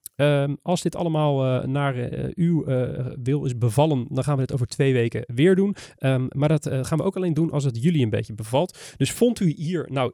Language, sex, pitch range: Dutch, male, 130-165 Hz